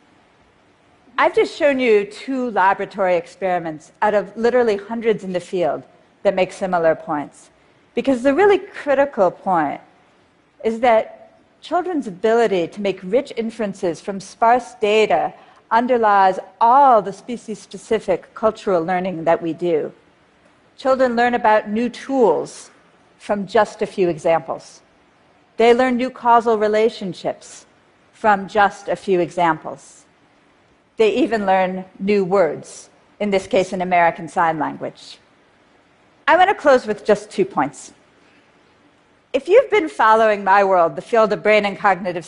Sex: female